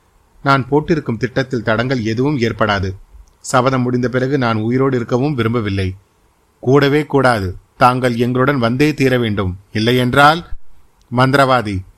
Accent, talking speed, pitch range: native, 115 wpm, 110-145 Hz